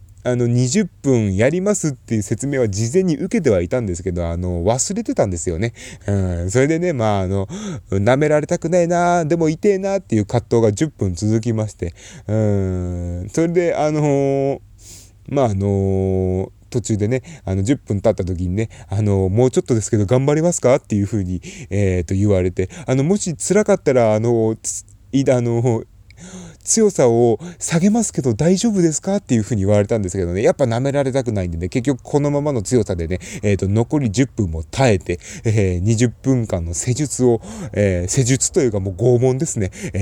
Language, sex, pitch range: Japanese, male, 100-140 Hz